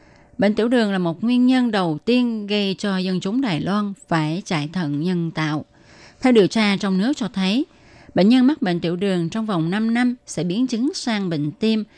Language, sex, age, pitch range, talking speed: Vietnamese, female, 20-39, 170-235 Hz, 215 wpm